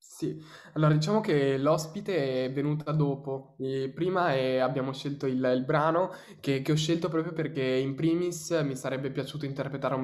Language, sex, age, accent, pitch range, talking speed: Italian, male, 10-29, native, 130-140 Hz, 160 wpm